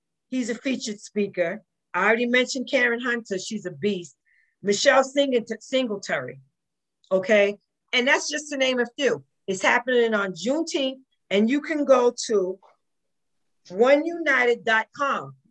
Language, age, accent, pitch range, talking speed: English, 40-59, American, 215-290 Hz, 125 wpm